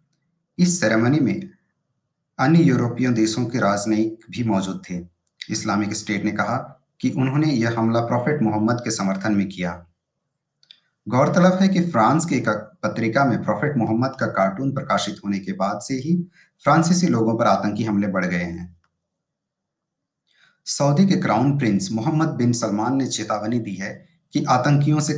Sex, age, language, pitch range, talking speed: male, 50-69, Hindi, 105-140 Hz, 100 wpm